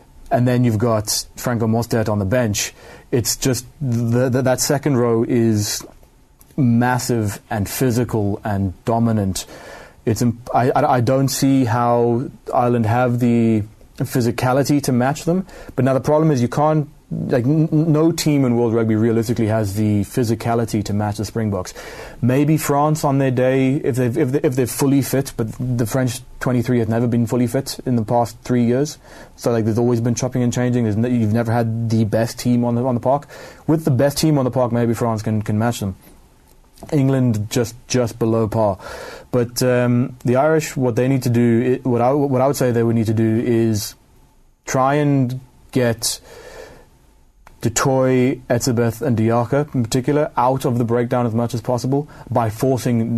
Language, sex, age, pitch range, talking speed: English, male, 20-39, 115-130 Hz, 185 wpm